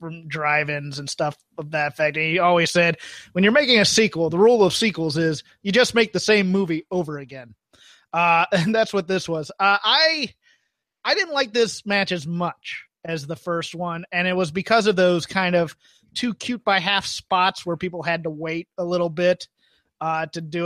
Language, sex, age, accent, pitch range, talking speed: English, male, 30-49, American, 170-195 Hz, 210 wpm